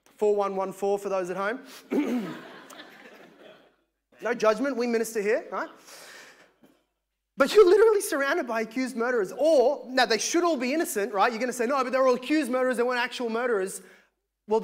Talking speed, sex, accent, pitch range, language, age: 170 wpm, male, Australian, 210-275 Hz, English, 20-39